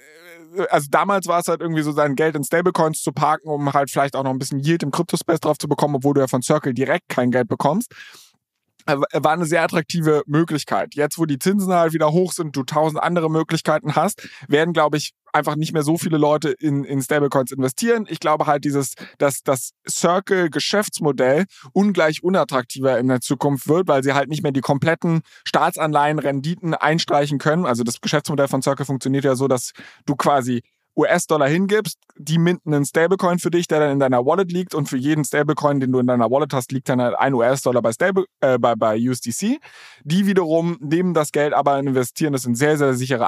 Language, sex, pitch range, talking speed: German, male, 135-165 Hz, 205 wpm